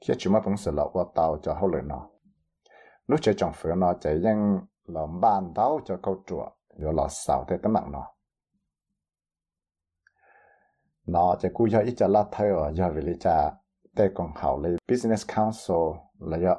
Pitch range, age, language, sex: 80-105 Hz, 60-79, English, male